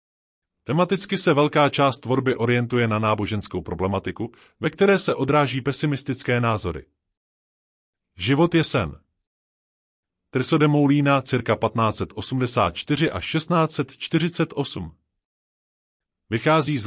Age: 30-49